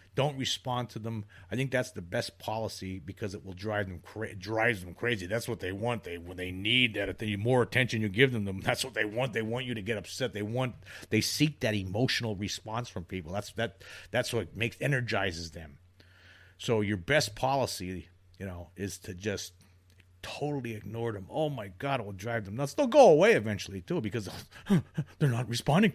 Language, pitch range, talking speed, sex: English, 95-125 Hz, 210 wpm, male